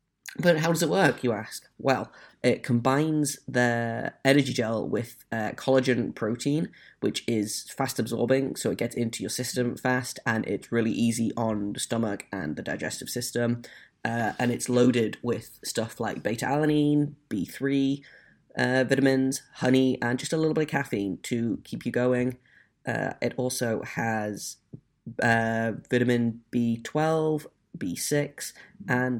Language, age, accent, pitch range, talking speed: English, 10-29, British, 115-135 Hz, 145 wpm